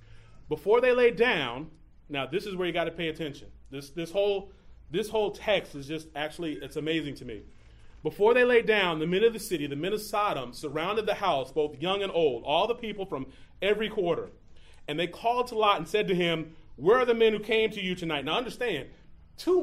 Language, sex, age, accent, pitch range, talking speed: English, male, 30-49, American, 155-210 Hz, 225 wpm